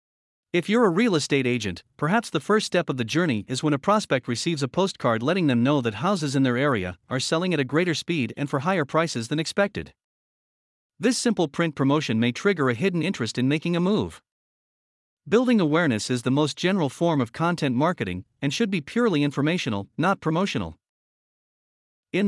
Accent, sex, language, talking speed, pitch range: American, male, English, 190 wpm, 125-180 Hz